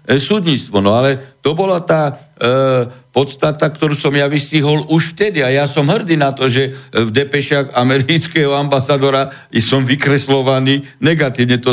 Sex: male